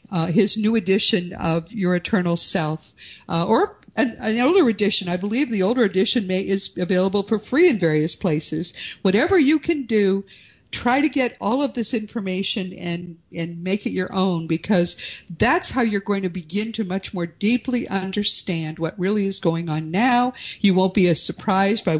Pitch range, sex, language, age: 175-225 Hz, female, English, 50-69